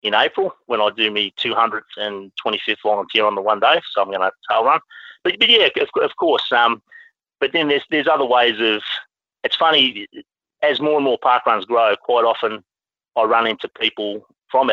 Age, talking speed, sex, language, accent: 40-59, 215 wpm, male, English, Australian